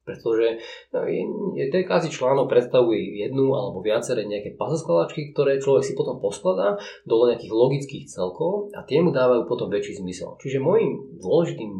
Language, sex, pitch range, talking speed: Slovak, male, 120-190 Hz, 140 wpm